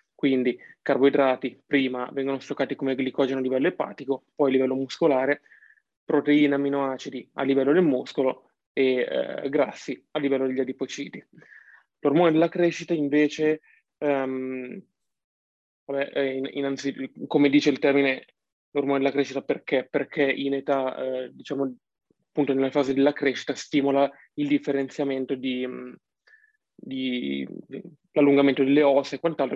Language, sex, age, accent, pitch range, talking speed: Italian, male, 20-39, native, 135-150 Hz, 120 wpm